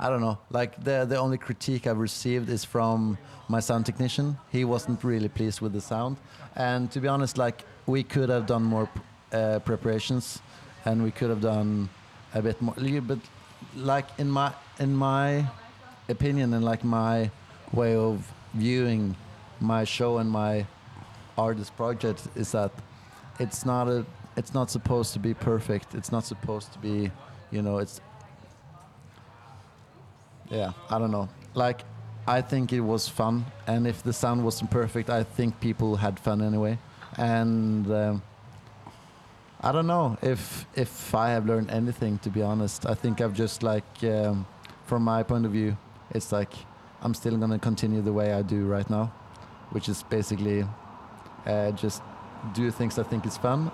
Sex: male